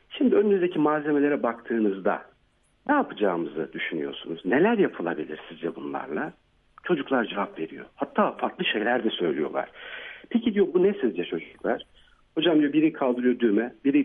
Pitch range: 105-155 Hz